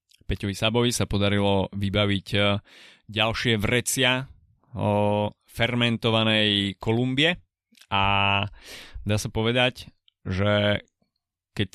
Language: Slovak